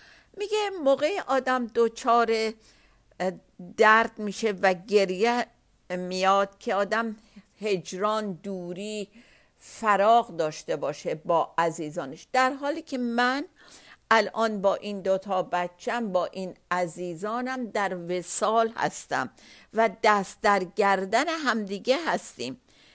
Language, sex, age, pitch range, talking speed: Persian, female, 50-69, 185-240 Hz, 100 wpm